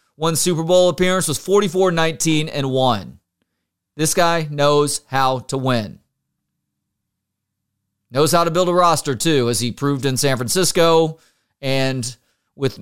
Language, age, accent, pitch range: English, 30-49, American, 130-175 Hz